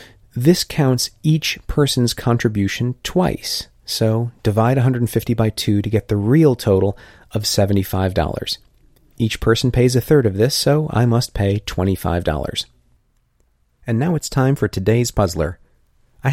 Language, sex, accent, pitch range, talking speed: English, male, American, 95-130 Hz, 140 wpm